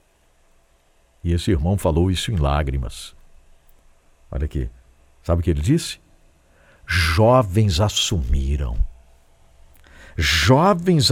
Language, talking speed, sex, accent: English, 90 wpm, male, Brazilian